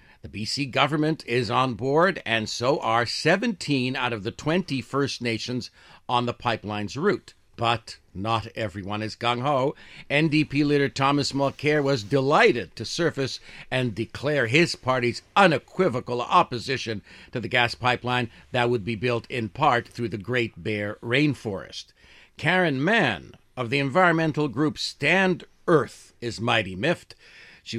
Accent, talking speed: American, 145 wpm